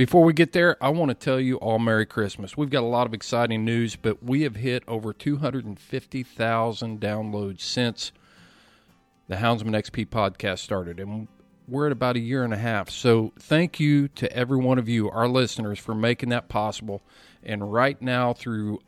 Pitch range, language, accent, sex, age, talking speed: 110-135 Hz, English, American, male, 40-59, 190 wpm